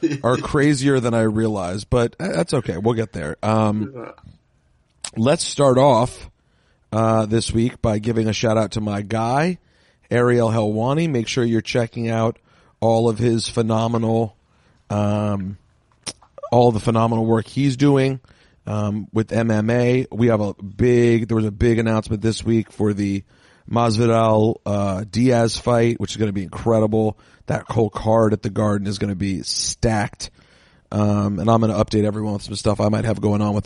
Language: English